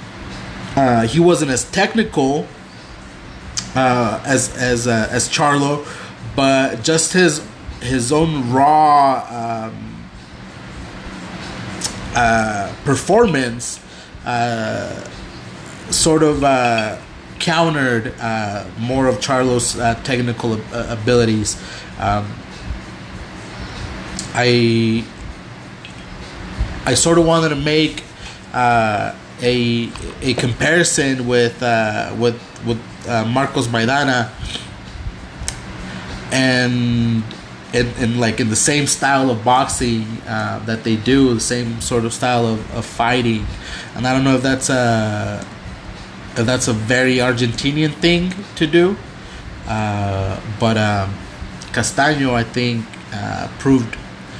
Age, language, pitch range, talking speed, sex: 30-49, English, 110-135 Hz, 110 wpm, male